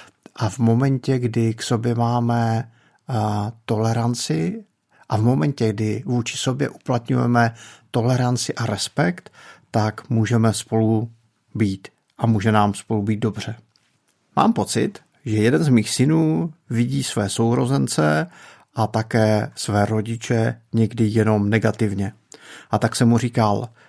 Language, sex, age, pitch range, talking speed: Czech, male, 50-69, 110-140 Hz, 125 wpm